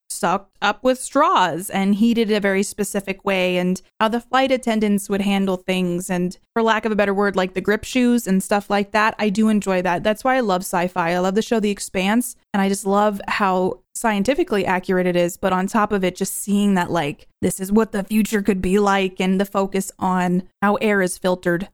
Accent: American